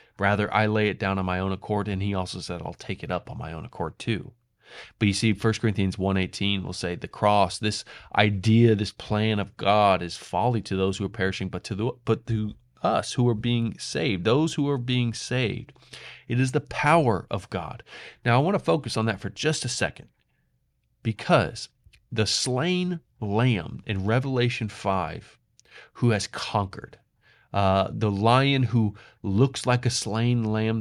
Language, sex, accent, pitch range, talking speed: English, male, American, 95-120 Hz, 185 wpm